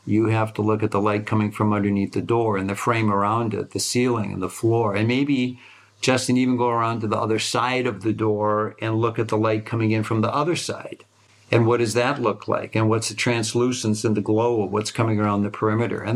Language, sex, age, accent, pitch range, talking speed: English, male, 50-69, American, 110-120 Hz, 245 wpm